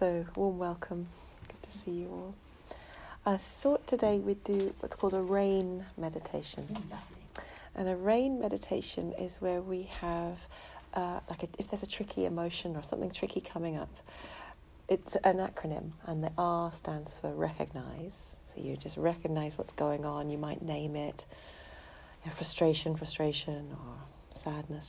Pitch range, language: 155-190 Hz, English